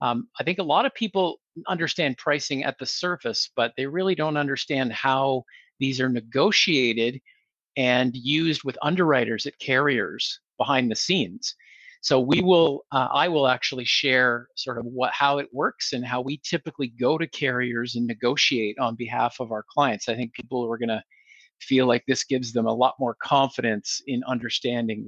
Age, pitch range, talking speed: 50-69, 115-140 Hz, 175 wpm